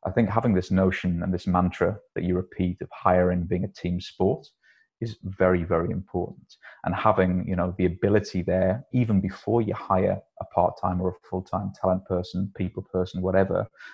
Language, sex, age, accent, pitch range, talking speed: English, male, 30-49, British, 90-95 Hz, 180 wpm